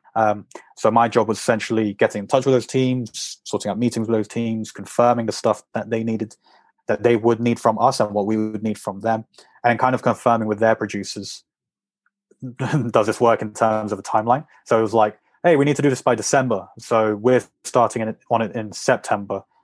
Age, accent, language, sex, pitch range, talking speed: 20-39, British, English, male, 105-120 Hz, 215 wpm